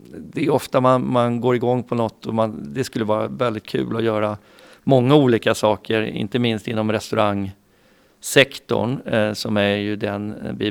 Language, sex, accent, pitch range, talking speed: Swedish, male, native, 105-115 Hz, 165 wpm